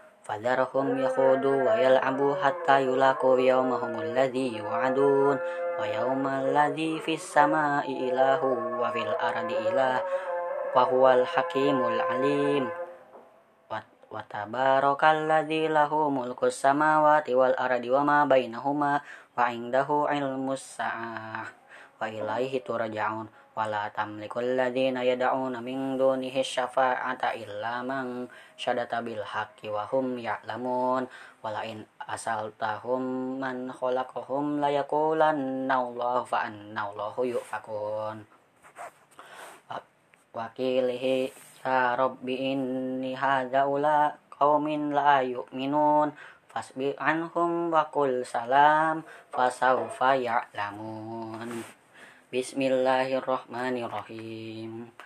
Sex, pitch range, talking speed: female, 120-140 Hz, 80 wpm